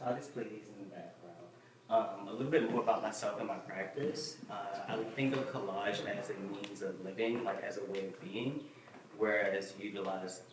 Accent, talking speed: American, 210 wpm